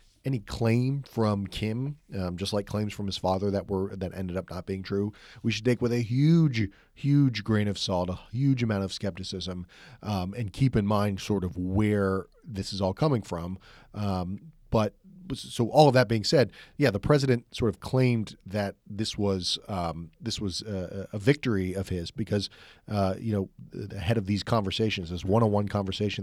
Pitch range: 95-125 Hz